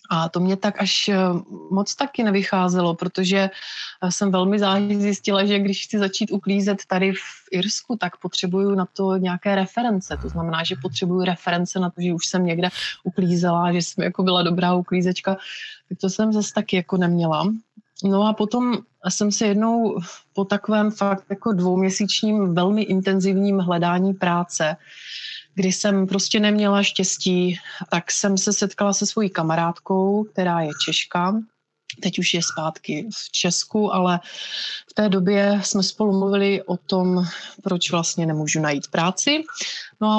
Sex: female